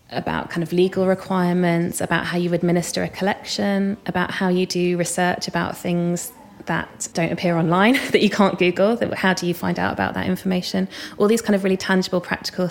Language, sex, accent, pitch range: English, female, British, 165-190 Hz